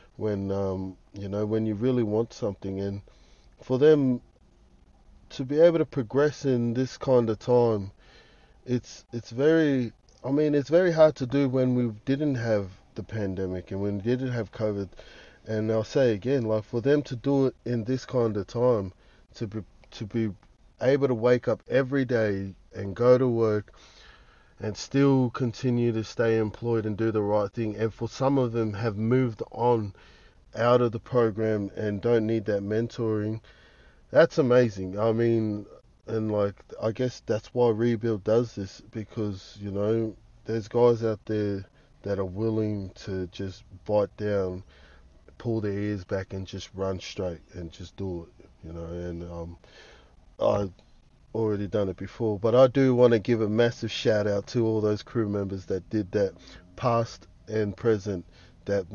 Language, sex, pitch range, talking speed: English, male, 100-120 Hz, 175 wpm